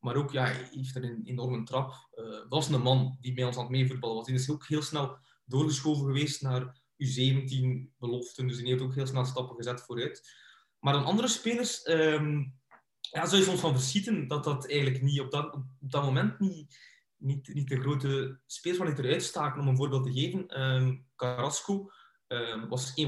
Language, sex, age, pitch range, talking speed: Dutch, male, 20-39, 125-145 Hz, 205 wpm